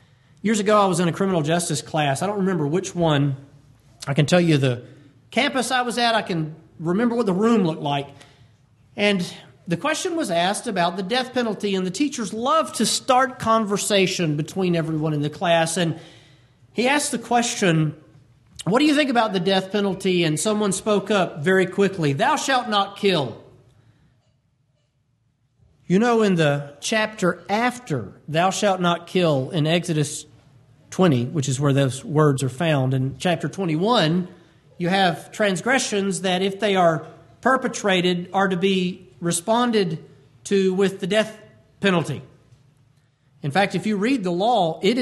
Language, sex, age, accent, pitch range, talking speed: English, male, 40-59, American, 145-215 Hz, 165 wpm